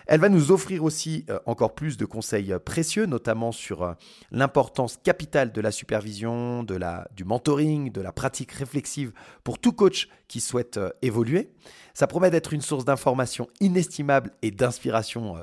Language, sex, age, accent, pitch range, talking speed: French, male, 30-49, French, 115-160 Hz, 155 wpm